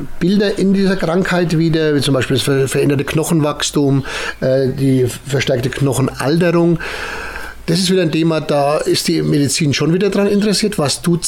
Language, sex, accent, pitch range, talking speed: German, male, German, 135-170 Hz, 155 wpm